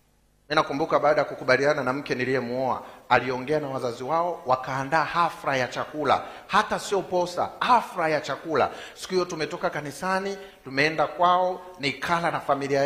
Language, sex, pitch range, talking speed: Swahili, male, 140-180 Hz, 140 wpm